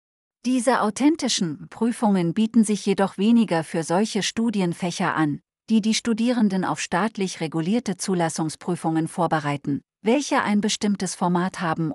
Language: German